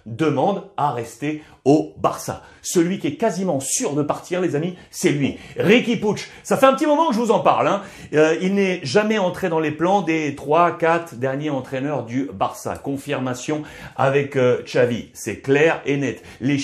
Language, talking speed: French, 190 wpm